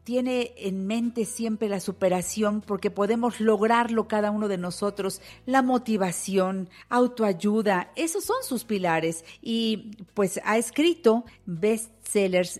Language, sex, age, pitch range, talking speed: Spanish, female, 50-69, 180-230 Hz, 120 wpm